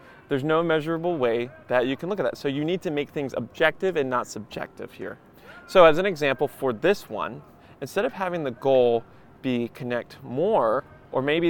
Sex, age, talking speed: male, 30-49, 200 wpm